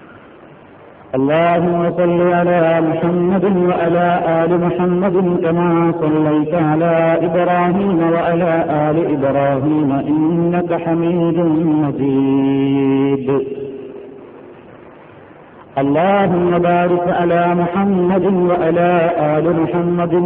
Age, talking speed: 50-69, 70 wpm